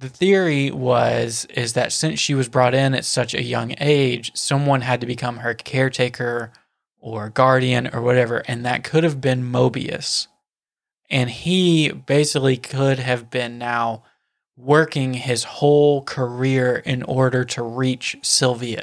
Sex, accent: male, American